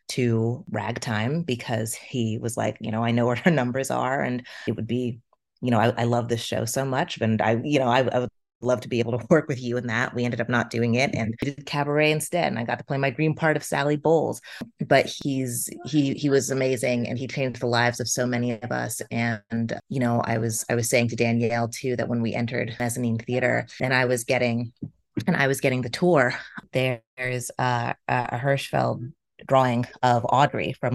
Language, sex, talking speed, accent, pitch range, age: English, female, 230 wpm, American, 120-135 Hz, 30-49